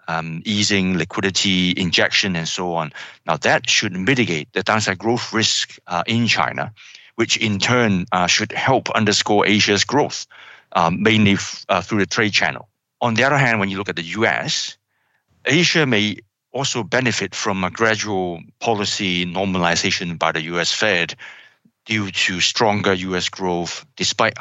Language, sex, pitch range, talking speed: English, male, 90-115 Hz, 155 wpm